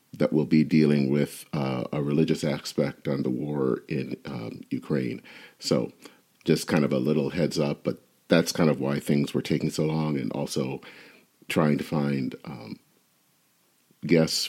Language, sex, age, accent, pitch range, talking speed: English, male, 40-59, American, 70-80 Hz, 165 wpm